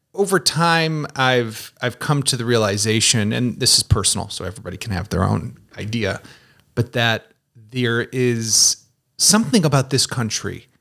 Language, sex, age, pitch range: English, male, 30-49, 110-140 Hz